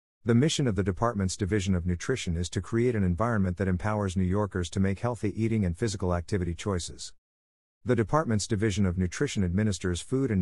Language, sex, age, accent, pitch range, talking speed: English, male, 50-69, American, 90-115 Hz, 190 wpm